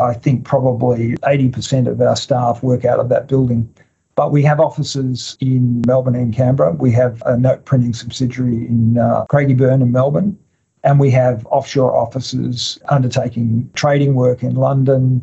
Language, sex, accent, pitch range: English, male, Australian, 125-140 Hz